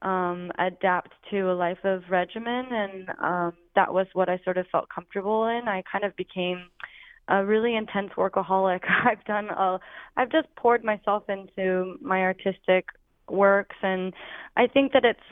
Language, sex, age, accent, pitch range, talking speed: English, female, 10-29, American, 180-200 Hz, 165 wpm